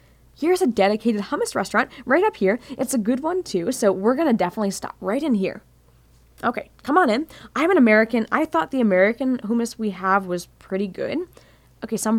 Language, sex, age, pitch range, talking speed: English, female, 10-29, 195-265 Hz, 195 wpm